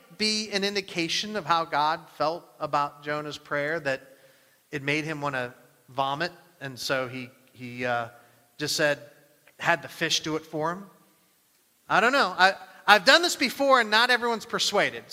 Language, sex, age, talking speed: English, male, 40-59, 170 wpm